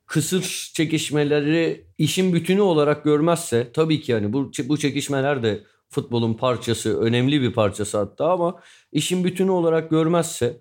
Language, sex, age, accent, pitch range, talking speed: Turkish, male, 40-59, native, 125-165 Hz, 135 wpm